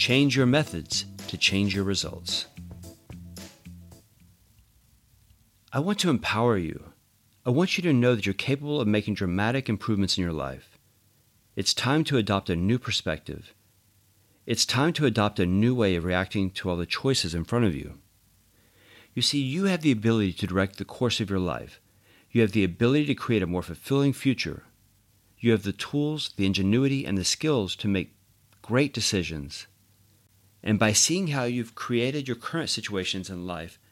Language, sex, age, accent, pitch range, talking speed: English, male, 40-59, American, 95-120 Hz, 175 wpm